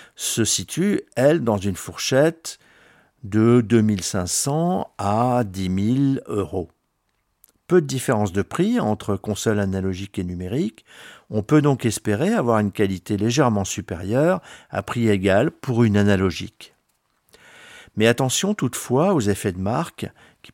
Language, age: French, 50-69